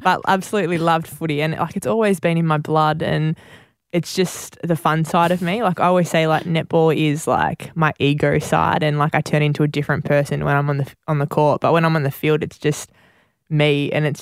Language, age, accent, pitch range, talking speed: English, 20-39, Australian, 150-160 Hz, 240 wpm